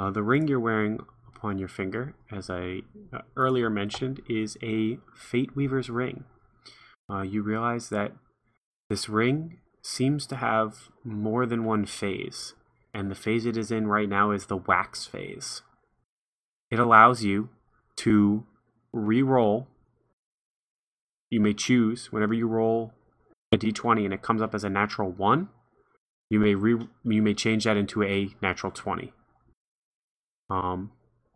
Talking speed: 145 wpm